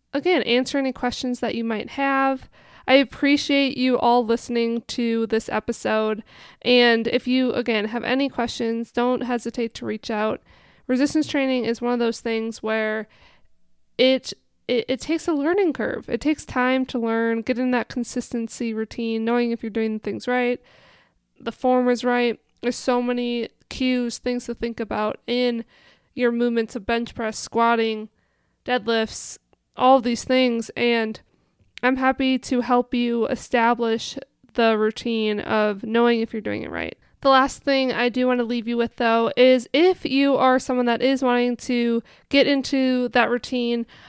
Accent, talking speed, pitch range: American, 165 wpm, 230-260 Hz